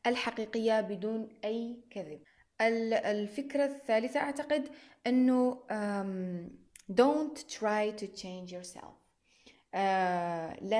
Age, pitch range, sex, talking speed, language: 20-39, 190-235 Hz, female, 80 wpm, Arabic